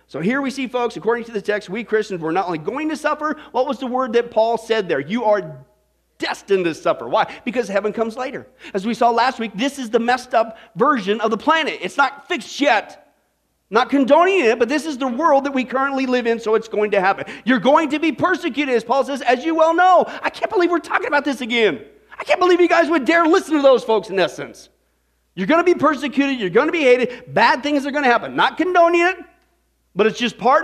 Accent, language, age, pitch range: American, English, 40-59, 220-305 Hz